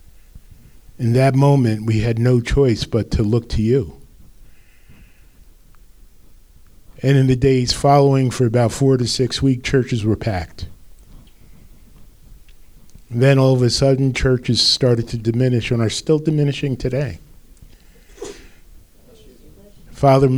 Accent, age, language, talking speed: American, 40-59, English, 120 wpm